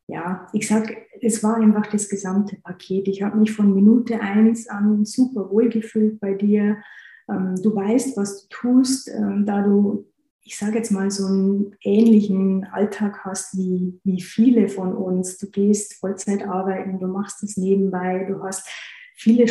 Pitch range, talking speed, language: 190-210 Hz, 165 wpm, German